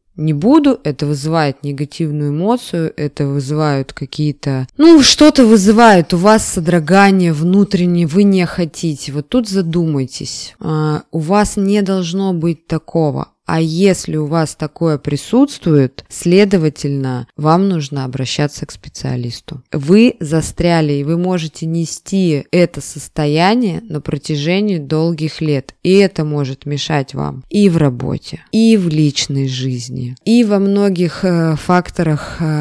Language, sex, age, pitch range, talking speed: Russian, female, 20-39, 150-185 Hz, 125 wpm